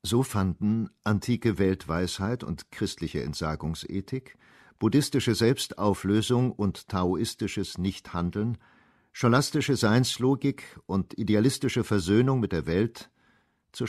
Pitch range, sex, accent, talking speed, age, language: 95-120 Hz, male, German, 90 wpm, 50-69, German